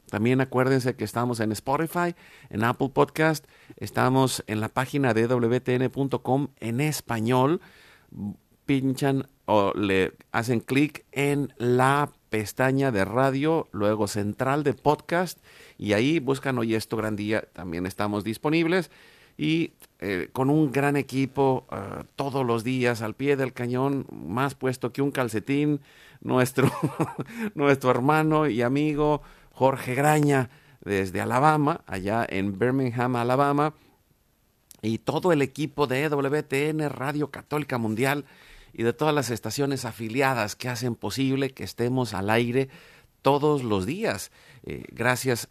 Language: Spanish